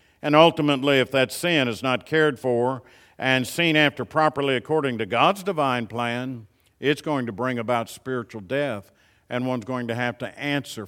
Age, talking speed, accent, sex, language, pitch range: 50-69, 175 wpm, American, male, English, 125-165 Hz